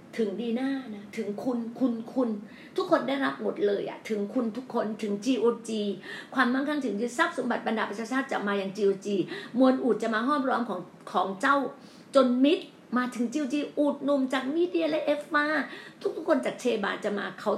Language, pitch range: Thai, 205-275 Hz